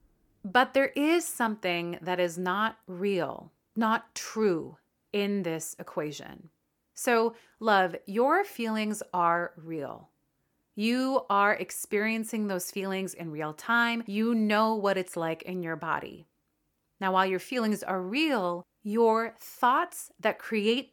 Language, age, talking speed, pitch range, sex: English, 30-49, 130 wpm, 180-230 Hz, female